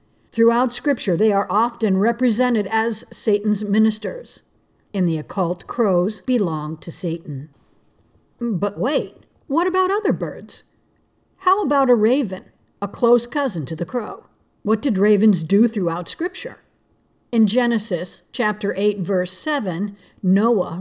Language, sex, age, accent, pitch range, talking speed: English, female, 50-69, American, 185-245 Hz, 130 wpm